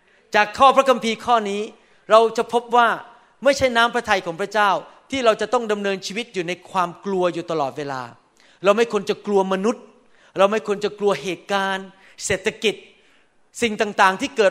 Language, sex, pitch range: Thai, male, 185-235 Hz